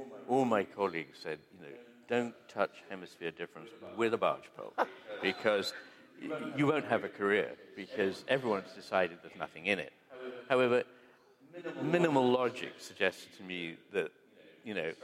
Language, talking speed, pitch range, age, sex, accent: English, 145 wpm, 95-135 Hz, 60-79, male, British